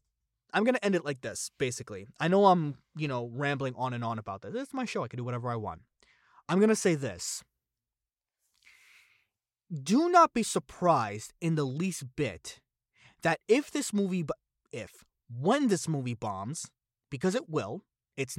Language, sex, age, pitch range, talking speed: English, male, 20-39, 130-205 Hz, 180 wpm